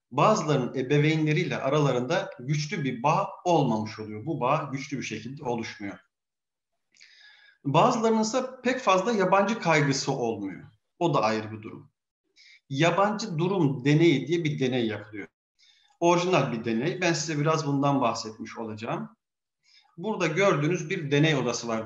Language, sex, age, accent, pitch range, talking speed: Turkish, male, 40-59, native, 125-180 Hz, 130 wpm